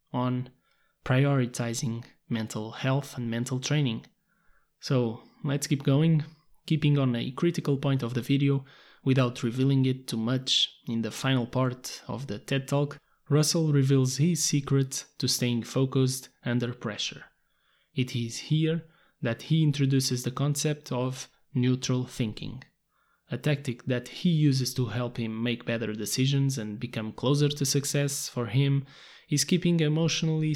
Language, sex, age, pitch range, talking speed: English, male, 20-39, 120-145 Hz, 145 wpm